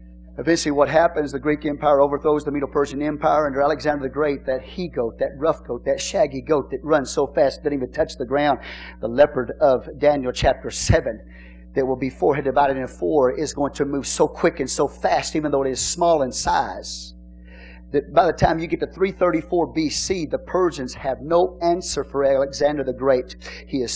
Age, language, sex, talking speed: 40-59, English, male, 200 wpm